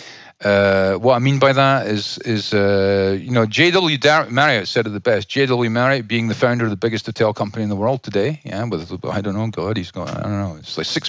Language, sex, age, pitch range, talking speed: English, male, 40-59, 105-135 Hz, 245 wpm